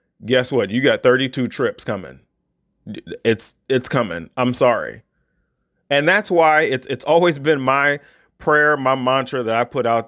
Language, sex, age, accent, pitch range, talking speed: English, male, 30-49, American, 115-170 Hz, 160 wpm